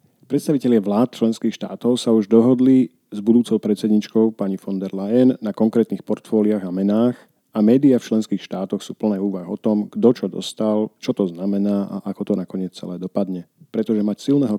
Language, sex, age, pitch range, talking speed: Slovak, male, 40-59, 100-110 Hz, 180 wpm